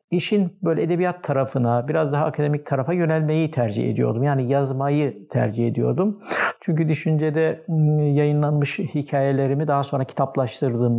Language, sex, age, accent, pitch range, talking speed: Turkish, male, 60-79, native, 135-170 Hz, 120 wpm